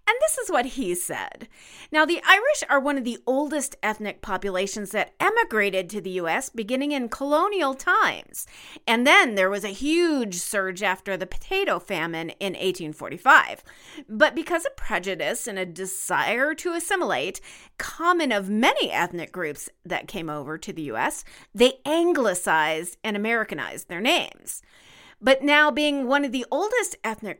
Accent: American